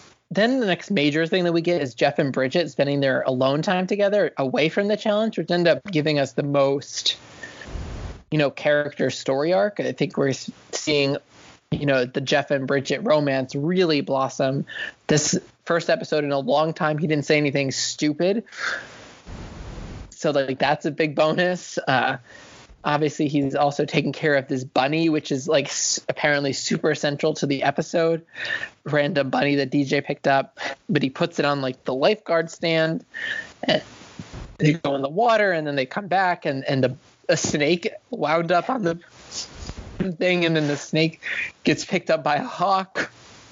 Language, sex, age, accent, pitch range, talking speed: English, male, 20-39, American, 140-170 Hz, 175 wpm